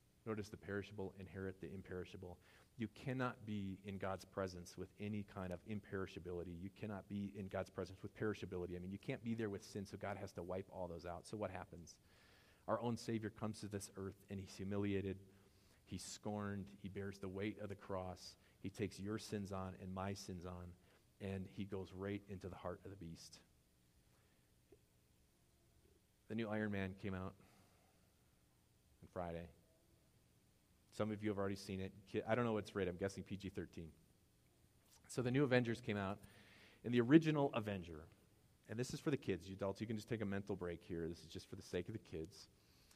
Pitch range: 95-105 Hz